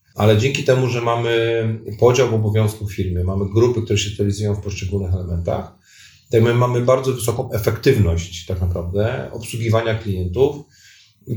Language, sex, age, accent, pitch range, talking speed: Polish, male, 40-59, native, 95-115 Hz, 145 wpm